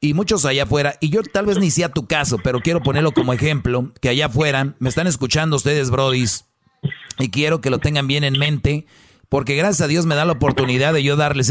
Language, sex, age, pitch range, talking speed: Spanish, male, 40-59, 135-170 Hz, 230 wpm